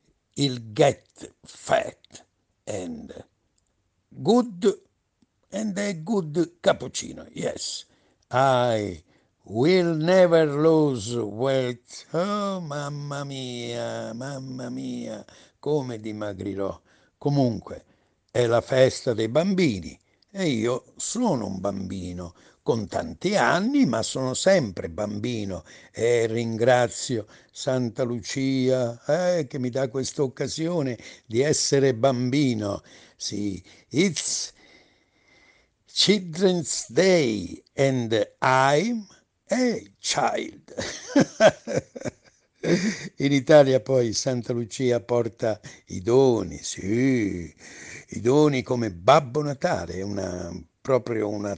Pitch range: 110-150 Hz